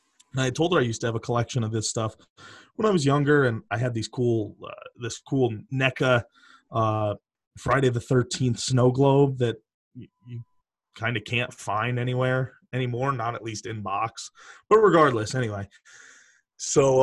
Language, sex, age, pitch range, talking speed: English, male, 30-49, 115-135 Hz, 170 wpm